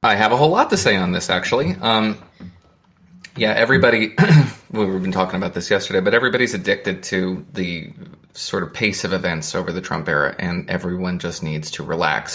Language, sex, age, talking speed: English, male, 20-39, 190 wpm